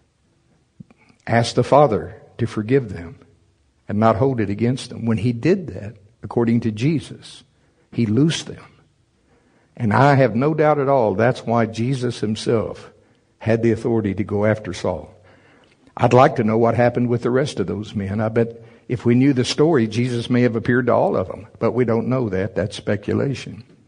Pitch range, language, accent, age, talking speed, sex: 110-130 Hz, English, American, 60-79, 185 wpm, male